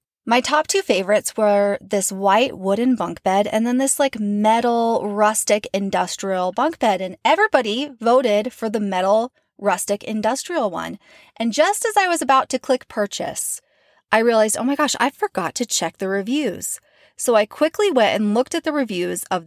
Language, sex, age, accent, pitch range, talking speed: English, female, 20-39, American, 200-260 Hz, 180 wpm